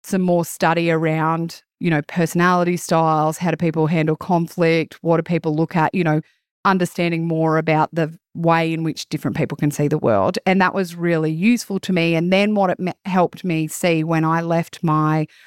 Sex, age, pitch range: female, 30-49, 160-180 Hz